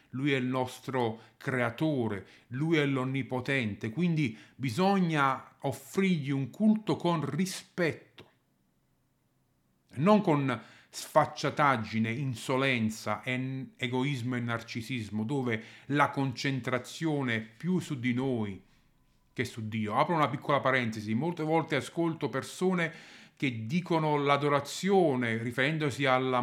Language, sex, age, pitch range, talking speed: Italian, male, 40-59, 125-165 Hz, 105 wpm